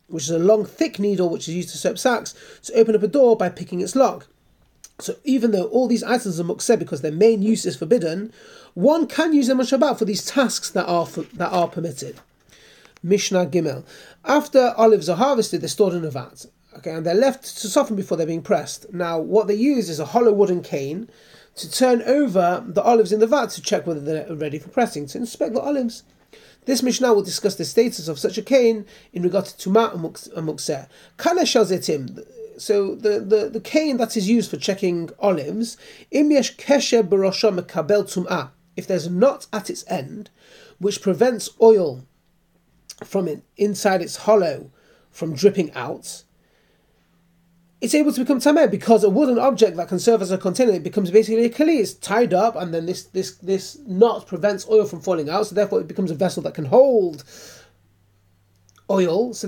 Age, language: 30-49, English